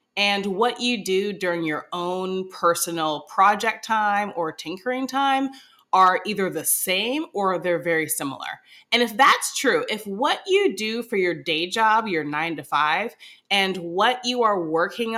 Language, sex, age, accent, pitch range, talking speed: English, female, 30-49, American, 175-245 Hz, 165 wpm